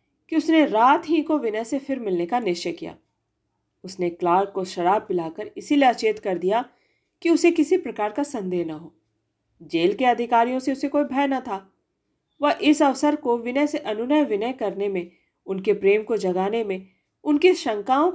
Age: 40-59